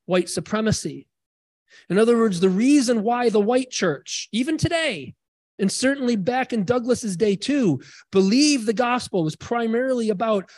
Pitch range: 175-245 Hz